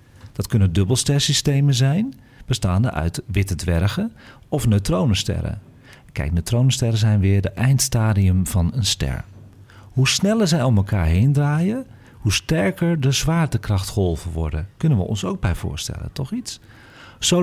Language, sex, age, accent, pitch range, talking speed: Dutch, male, 40-59, Dutch, 100-150 Hz, 140 wpm